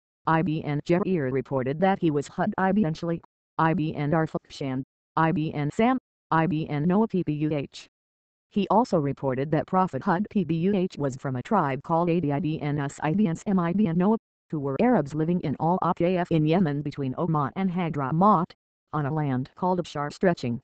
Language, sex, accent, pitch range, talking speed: Bengali, female, American, 145-185 Hz, 150 wpm